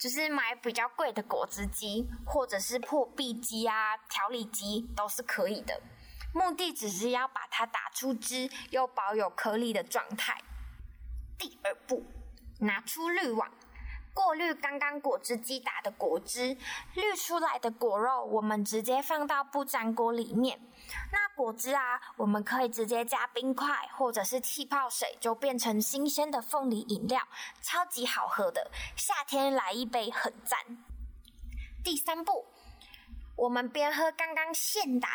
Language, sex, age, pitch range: Chinese, female, 10-29, 235-295 Hz